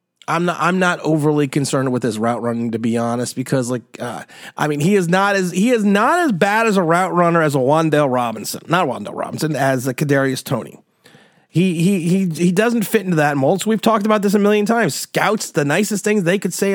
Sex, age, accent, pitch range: male, 30-49, American, 150-210 Hz